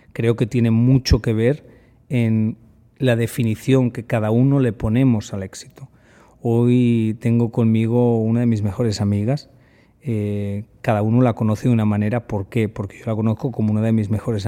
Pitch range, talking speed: 110-125 Hz, 180 wpm